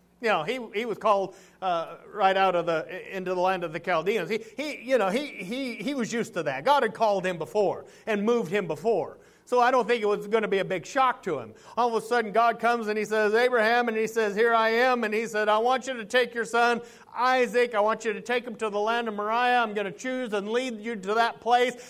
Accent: American